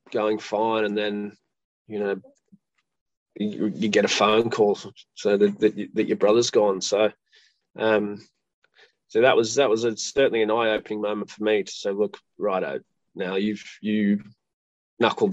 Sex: male